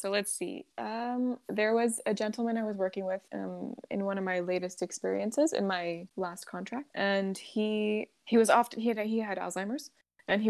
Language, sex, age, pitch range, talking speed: English, female, 20-39, 185-220 Hz, 200 wpm